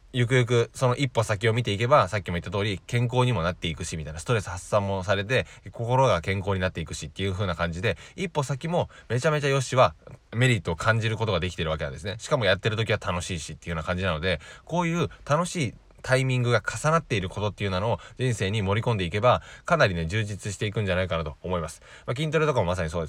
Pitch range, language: 90-120 Hz, Japanese